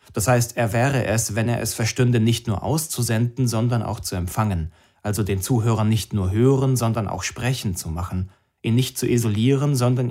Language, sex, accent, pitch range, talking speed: German, male, German, 100-130 Hz, 190 wpm